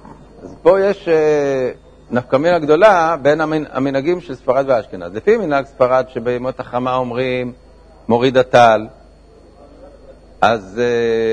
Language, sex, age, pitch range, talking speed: Hebrew, male, 50-69, 125-170 Hz, 95 wpm